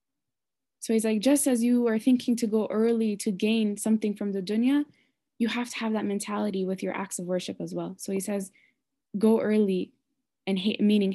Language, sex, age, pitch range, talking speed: English, female, 10-29, 185-225 Hz, 205 wpm